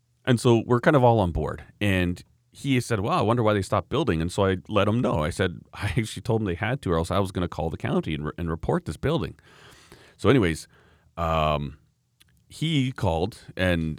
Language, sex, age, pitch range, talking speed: English, male, 40-59, 90-120 Hz, 230 wpm